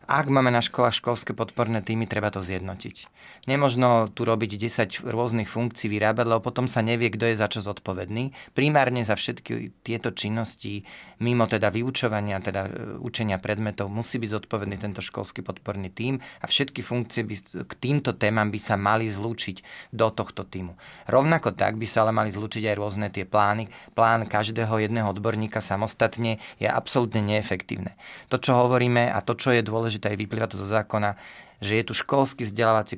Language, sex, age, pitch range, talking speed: Slovak, male, 30-49, 105-120 Hz, 175 wpm